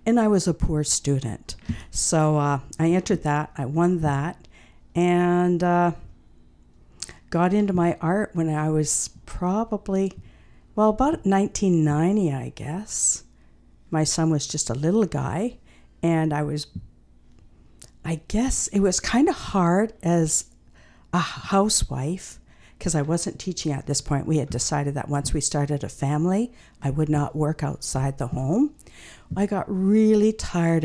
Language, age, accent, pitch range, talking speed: English, 50-69, American, 140-180 Hz, 150 wpm